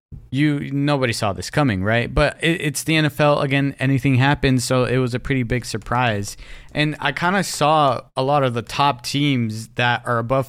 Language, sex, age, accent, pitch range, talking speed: English, male, 20-39, American, 115-140 Hz, 195 wpm